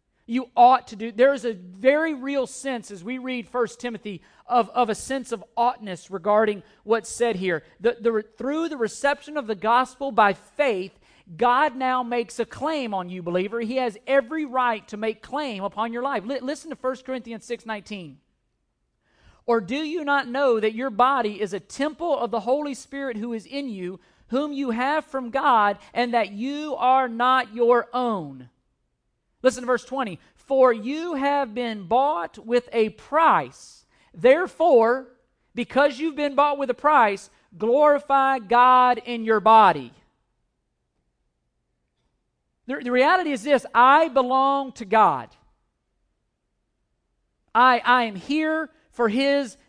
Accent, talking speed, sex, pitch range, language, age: American, 160 wpm, male, 220-275 Hz, English, 40-59